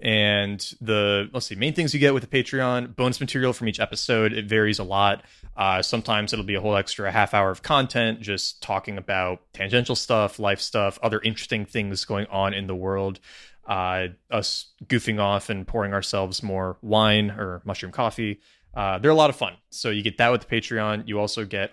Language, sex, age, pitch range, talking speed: English, male, 20-39, 95-115 Hz, 205 wpm